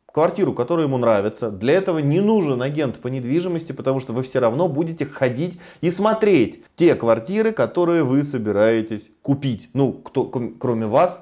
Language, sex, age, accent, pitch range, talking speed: Russian, male, 30-49, native, 120-180 Hz, 160 wpm